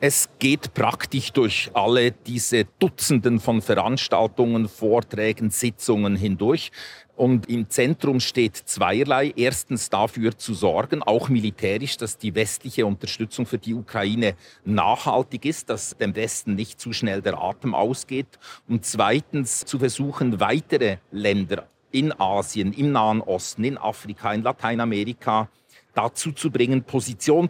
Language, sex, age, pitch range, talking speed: German, male, 40-59, 110-130 Hz, 130 wpm